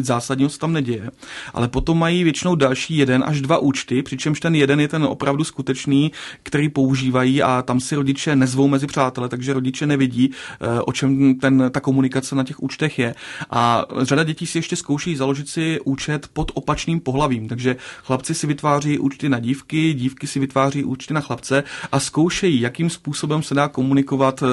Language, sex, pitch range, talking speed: Czech, male, 130-150 Hz, 180 wpm